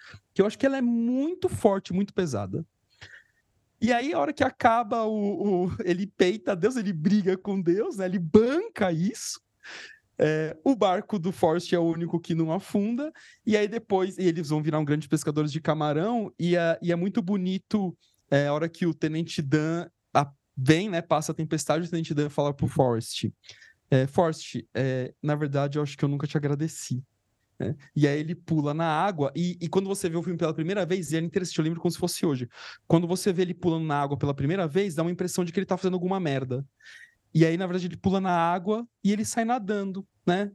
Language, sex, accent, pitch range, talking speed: Portuguese, male, Brazilian, 150-195 Hz, 220 wpm